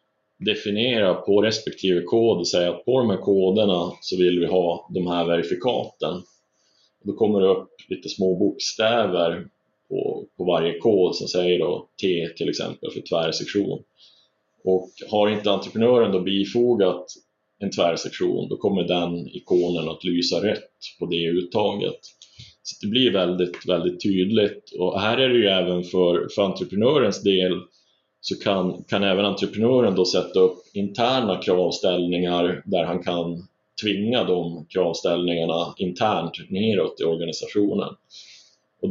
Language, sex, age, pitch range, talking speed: Swedish, male, 30-49, 90-105 Hz, 140 wpm